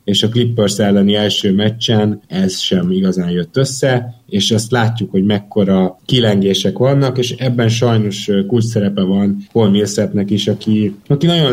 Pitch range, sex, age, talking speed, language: 105-120 Hz, male, 20-39, 150 wpm, Hungarian